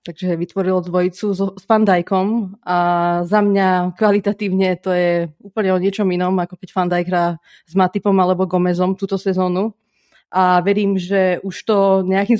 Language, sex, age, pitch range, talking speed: Slovak, female, 30-49, 180-210 Hz, 150 wpm